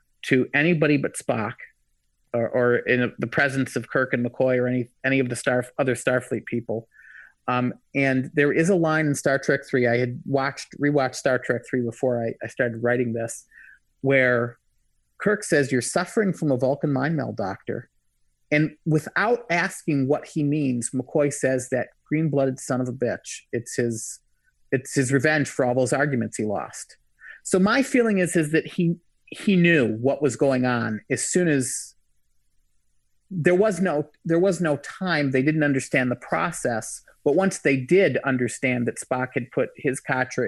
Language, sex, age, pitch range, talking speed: English, male, 40-59, 120-155 Hz, 180 wpm